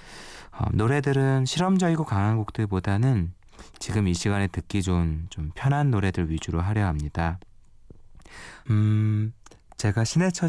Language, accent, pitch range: Korean, native, 85-110 Hz